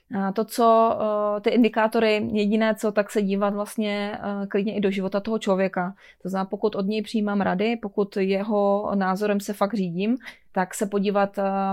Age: 30-49